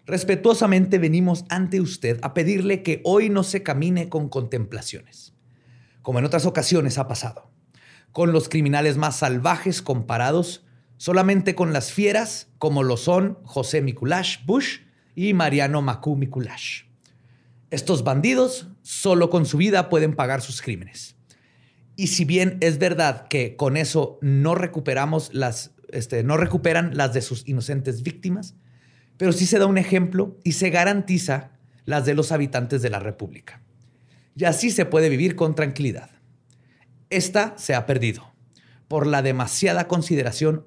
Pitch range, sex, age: 125-175 Hz, male, 40-59